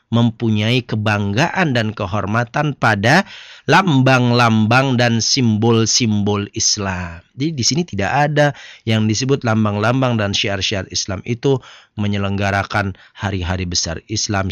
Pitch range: 110-145 Hz